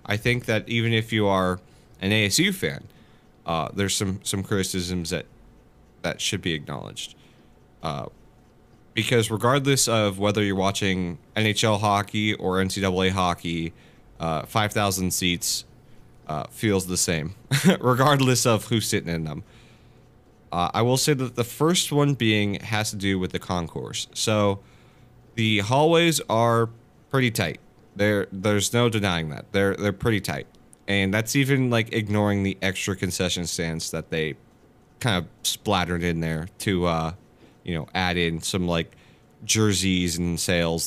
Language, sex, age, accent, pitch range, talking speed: English, male, 30-49, American, 90-120 Hz, 150 wpm